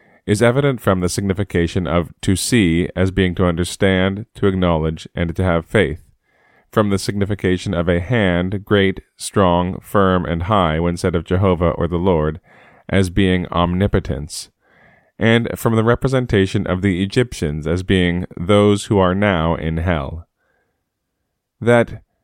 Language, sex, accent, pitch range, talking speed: English, male, American, 85-105 Hz, 150 wpm